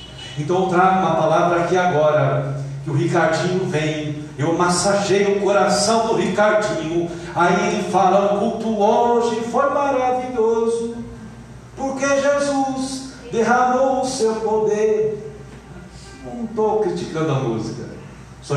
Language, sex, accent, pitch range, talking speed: Portuguese, male, Brazilian, 145-225 Hz, 120 wpm